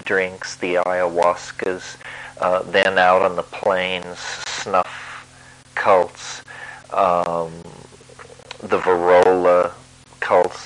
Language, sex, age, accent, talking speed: English, male, 40-59, American, 85 wpm